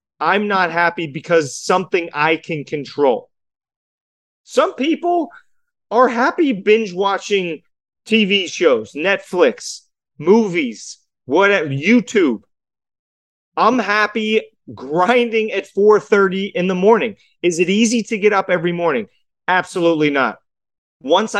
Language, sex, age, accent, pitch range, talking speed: English, male, 30-49, American, 160-205 Hz, 110 wpm